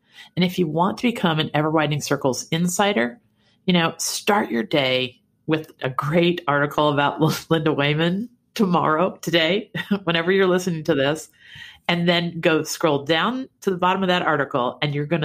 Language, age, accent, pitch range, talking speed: English, 50-69, American, 140-180 Hz, 170 wpm